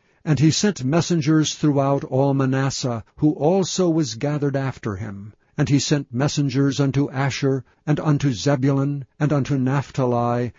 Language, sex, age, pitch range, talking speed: English, male, 60-79, 125-150 Hz, 140 wpm